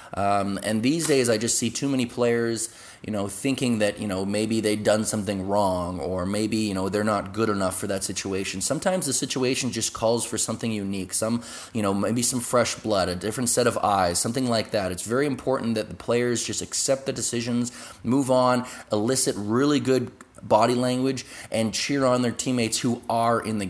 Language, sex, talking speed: English, male, 205 wpm